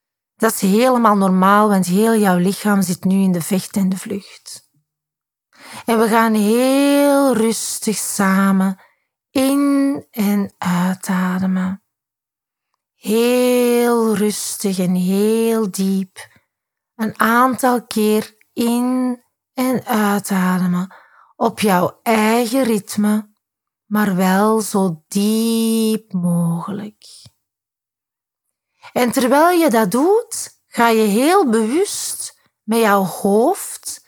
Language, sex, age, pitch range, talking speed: Dutch, female, 30-49, 190-245 Hz, 100 wpm